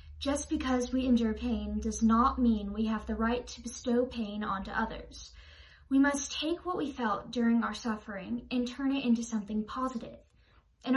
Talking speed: 180 wpm